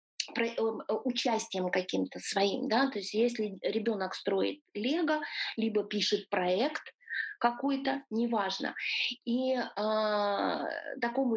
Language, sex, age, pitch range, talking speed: Russian, female, 20-39, 200-255 Hz, 95 wpm